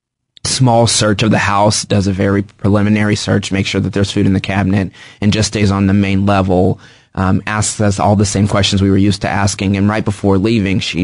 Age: 20-39